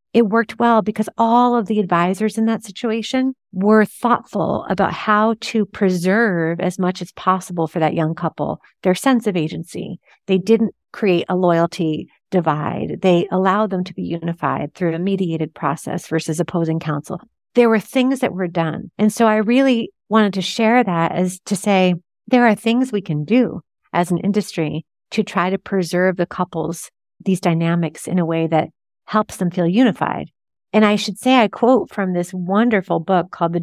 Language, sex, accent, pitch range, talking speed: English, female, American, 170-215 Hz, 180 wpm